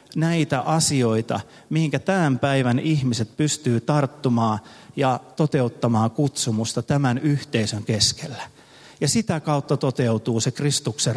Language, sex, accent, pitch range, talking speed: Finnish, male, native, 120-150 Hz, 105 wpm